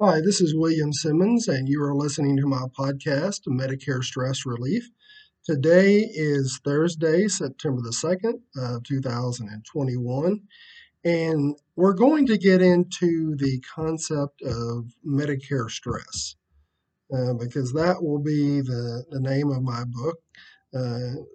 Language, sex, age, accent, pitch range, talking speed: English, male, 40-59, American, 130-175 Hz, 130 wpm